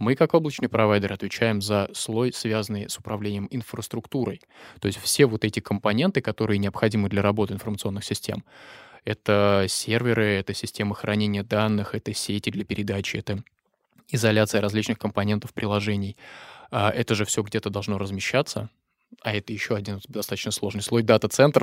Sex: male